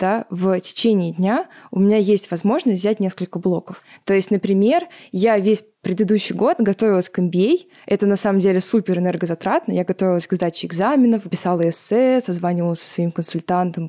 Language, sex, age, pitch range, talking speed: Russian, female, 20-39, 180-220 Hz, 165 wpm